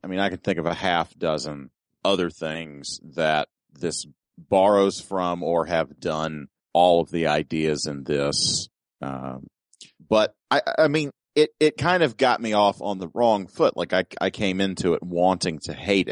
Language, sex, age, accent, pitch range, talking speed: English, male, 30-49, American, 80-110 Hz, 180 wpm